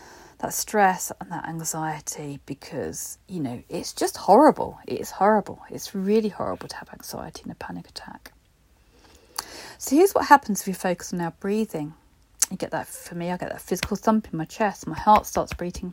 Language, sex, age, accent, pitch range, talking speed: English, female, 40-59, British, 170-210 Hz, 190 wpm